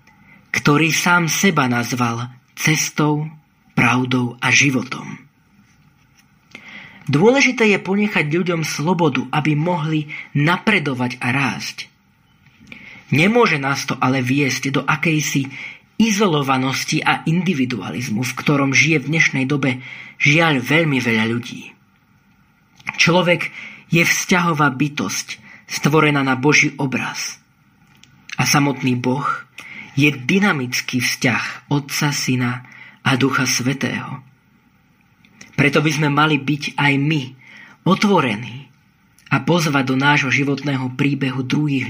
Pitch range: 130-155 Hz